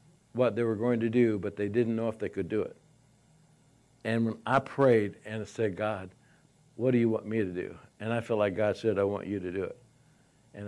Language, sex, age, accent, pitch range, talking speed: English, male, 60-79, American, 115-145 Hz, 240 wpm